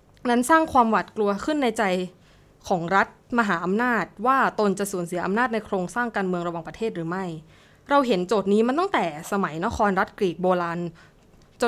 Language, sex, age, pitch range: Thai, female, 20-39, 175-235 Hz